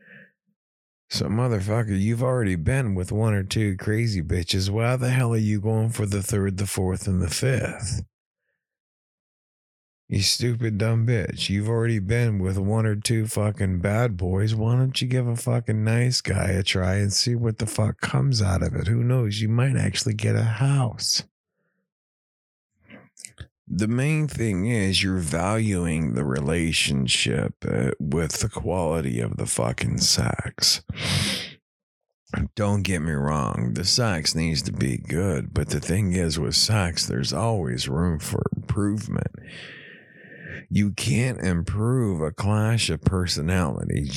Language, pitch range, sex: English, 90-115 Hz, male